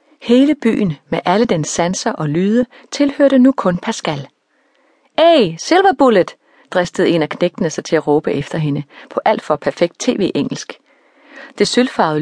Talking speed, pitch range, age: 150 wpm, 165-255 Hz, 30-49